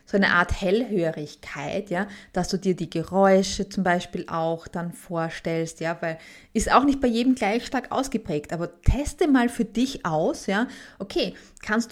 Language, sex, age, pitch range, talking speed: German, female, 20-39, 170-220 Hz, 170 wpm